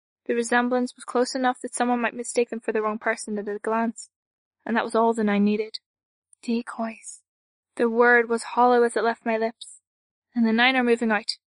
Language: English